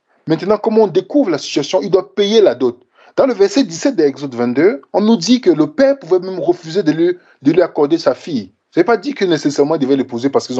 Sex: male